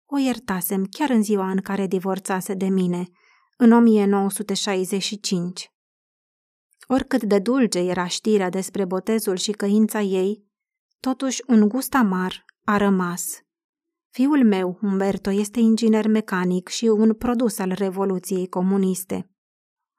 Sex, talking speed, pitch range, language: female, 120 wpm, 190-245 Hz, Romanian